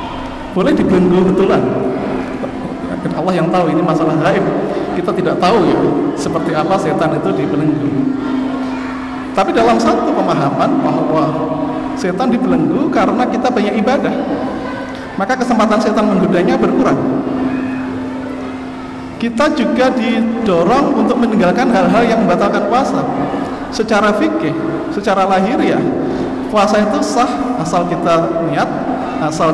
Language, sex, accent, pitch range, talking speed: Indonesian, male, native, 190-265 Hz, 110 wpm